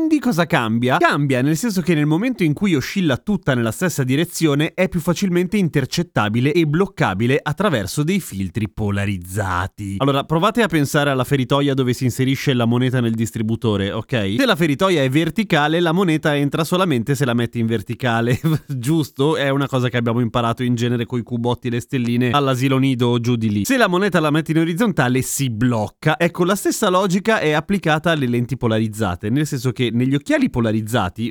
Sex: male